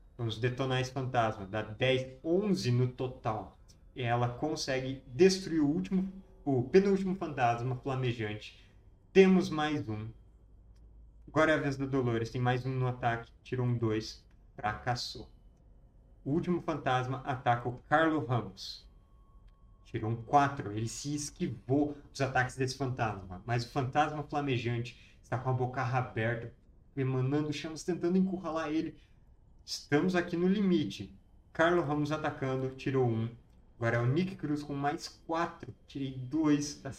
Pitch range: 115-150 Hz